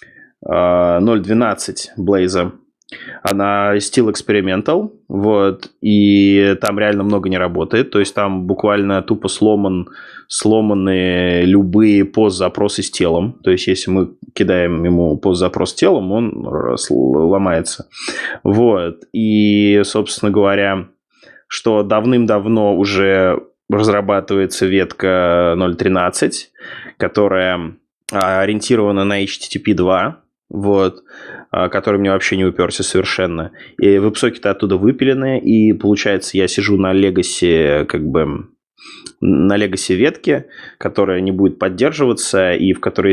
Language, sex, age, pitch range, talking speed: Russian, male, 20-39, 95-105 Hz, 110 wpm